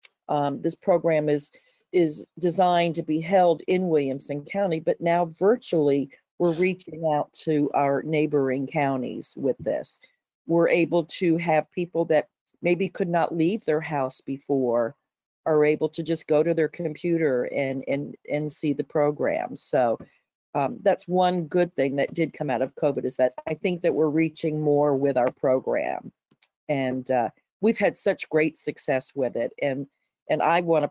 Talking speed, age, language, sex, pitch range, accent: 170 wpm, 50-69, English, female, 140-165 Hz, American